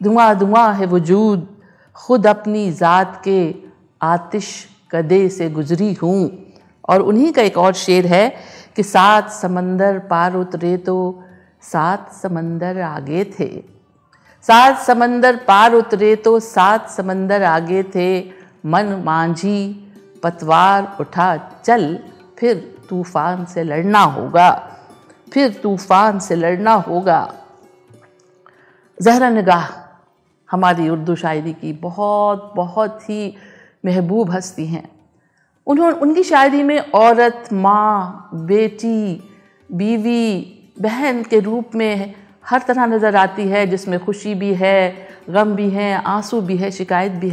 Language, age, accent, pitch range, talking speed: Hindi, 50-69, native, 180-215 Hz, 120 wpm